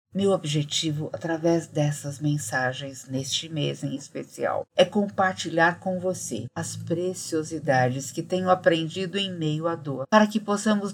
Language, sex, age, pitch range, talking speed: Portuguese, female, 50-69, 140-180 Hz, 135 wpm